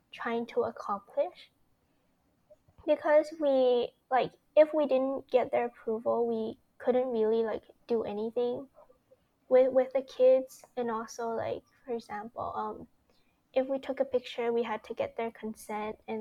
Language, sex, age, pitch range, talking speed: English, female, 20-39, 220-265 Hz, 150 wpm